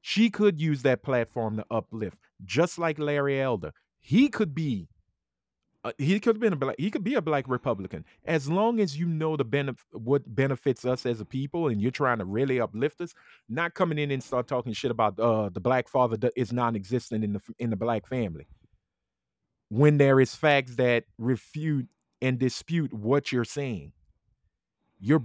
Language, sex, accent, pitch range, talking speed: English, male, American, 115-155 Hz, 190 wpm